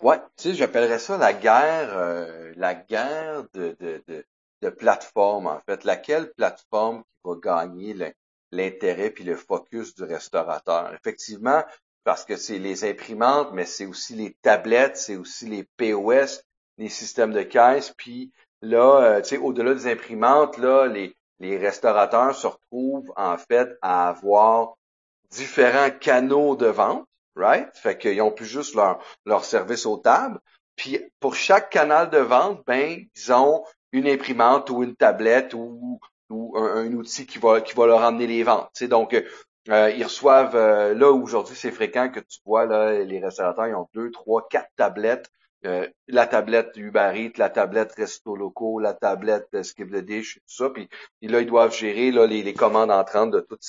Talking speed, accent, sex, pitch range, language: 180 wpm, Canadian, male, 110-155 Hz, French